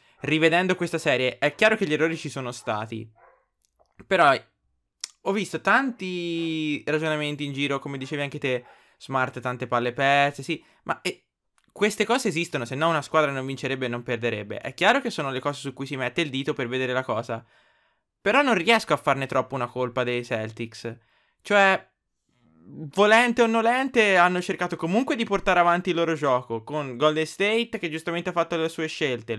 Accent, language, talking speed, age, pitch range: native, Italian, 185 wpm, 20-39, 135-185 Hz